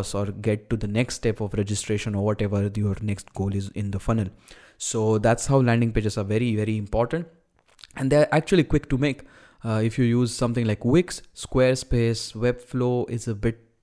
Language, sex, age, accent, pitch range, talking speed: English, male, 20-39, Indian, 110-130 Hz, 190 wpm